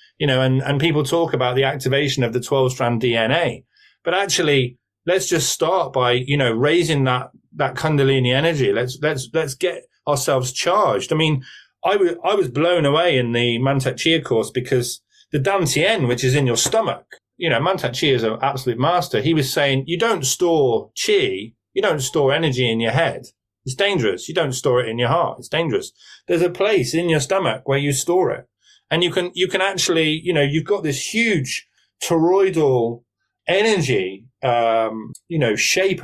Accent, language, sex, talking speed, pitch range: British, English, male, 190 wpm, 130-170 Hz